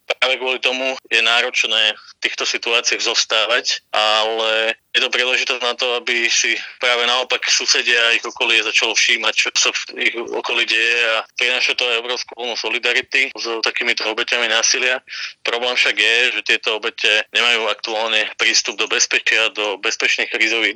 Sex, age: male, 20-39